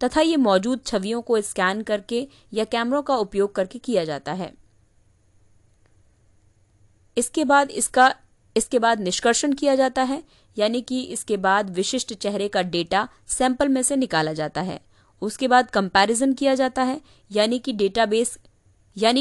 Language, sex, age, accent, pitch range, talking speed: Hindi, female, 20-39, native, 170-255 Hz, 150 wpm